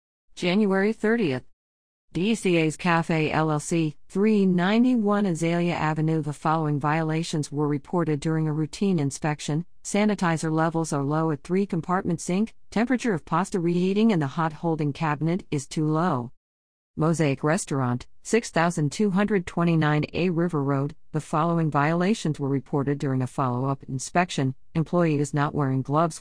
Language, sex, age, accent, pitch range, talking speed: English, female, 50-69, American, 145-185 Hz, 130 wpm